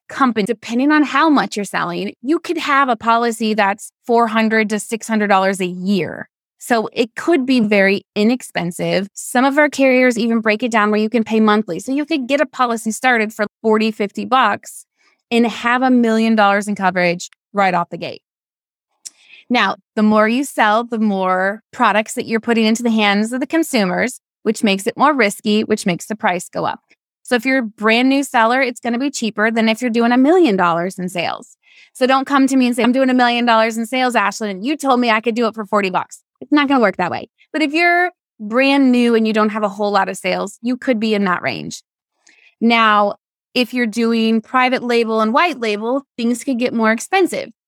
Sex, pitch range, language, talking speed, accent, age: female, 210-255 Hz, English, 220 wpm, American, 20-39